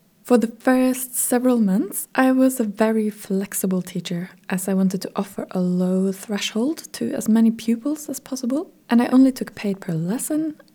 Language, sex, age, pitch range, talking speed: English, female, 20-39, 190-240 Hz, 180 wpm